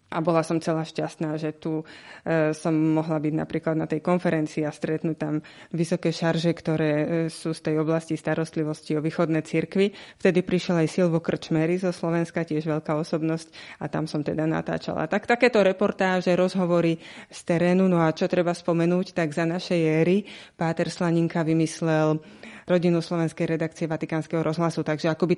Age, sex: 20-39, female